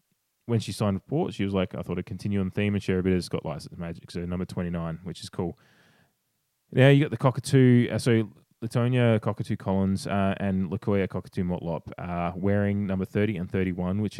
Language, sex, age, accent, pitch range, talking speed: English, male, 20-39, Australian, 85-100 Hz, 215 wpm